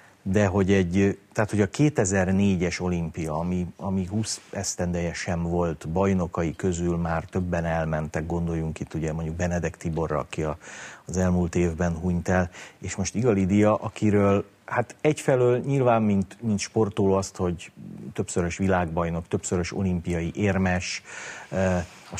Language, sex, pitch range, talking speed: Hungarian, male, 85-105 Hz, 130 wpm